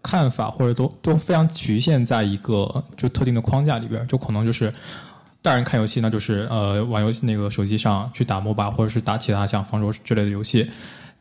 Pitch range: 110-135 Hz